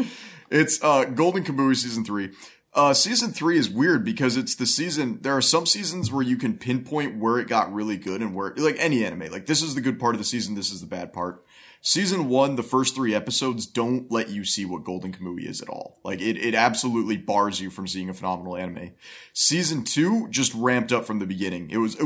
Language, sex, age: English, male, 30-49